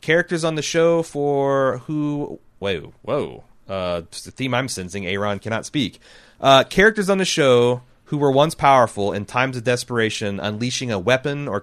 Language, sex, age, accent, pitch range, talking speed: English, male, 30-49, American, 100-125 Hz, 170 wpm